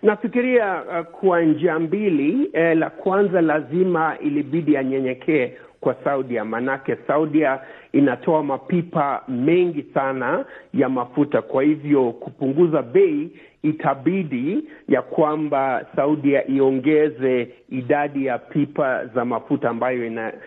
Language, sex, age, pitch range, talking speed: Swahili, male, 50-69, 130-180 Hz, 110 wpm